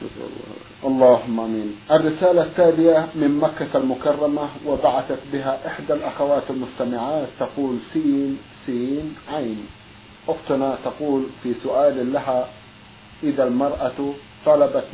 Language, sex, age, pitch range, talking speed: Arabic, male, 50-69, 125-165 Hz, 95 wpm